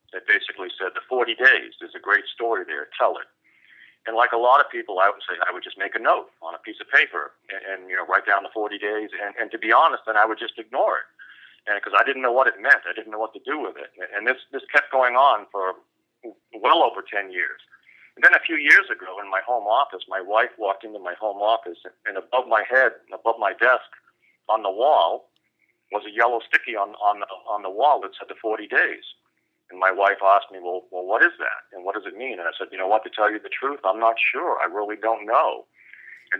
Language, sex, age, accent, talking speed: English, male, 50-69, American, 255 wpm